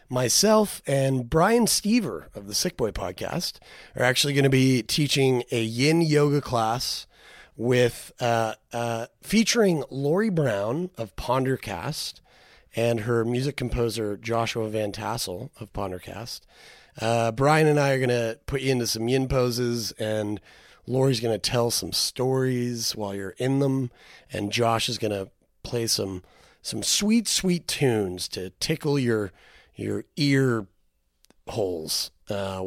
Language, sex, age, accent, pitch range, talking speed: English, male, 30-49, American, 110-140 Hz, 145 wpm